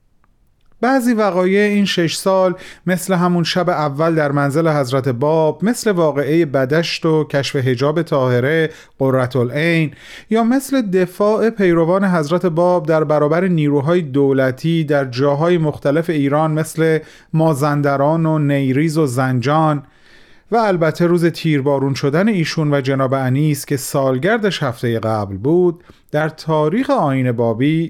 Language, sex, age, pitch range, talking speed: Persian, male, 40-59, 135-175 Hz, 125 wpm